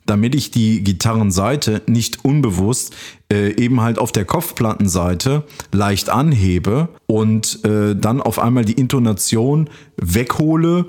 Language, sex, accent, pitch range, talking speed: German, male, German, 105-130 Hz, 120 wpm